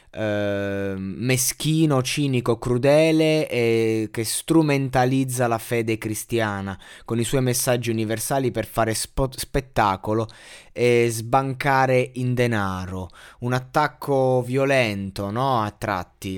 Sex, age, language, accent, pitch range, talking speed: male, 20-39, Italian, native, 110-130 Hz, 90 wpm